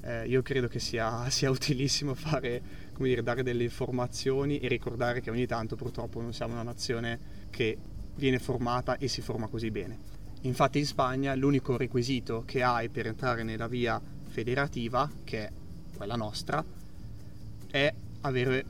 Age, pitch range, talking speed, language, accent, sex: 20-39, 115-130 Hz, 155 wpm, Italian, native, male